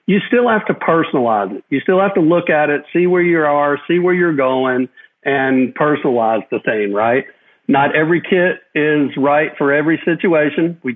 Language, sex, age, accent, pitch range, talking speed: English, male, 50-69, American, 140-180 Hz, 190 wpm